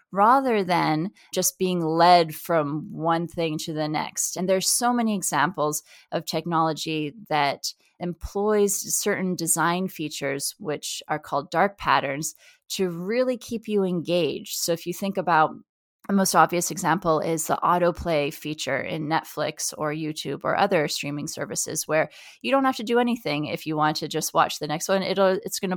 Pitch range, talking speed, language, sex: 155-200 Hz, 170 wpm, English, female